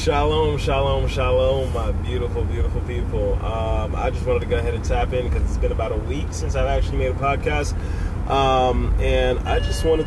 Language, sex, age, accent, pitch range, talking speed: English, male, 20-39, American, 85-110 Hz, 210 wpm